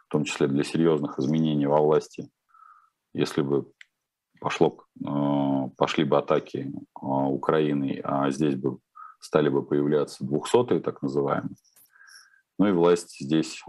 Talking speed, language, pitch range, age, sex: 125 wpm, Russian, 70-90 Hz, 40-59, male